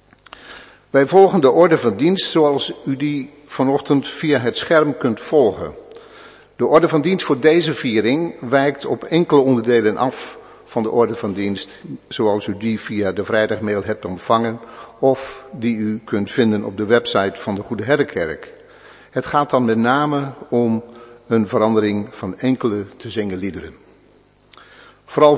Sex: male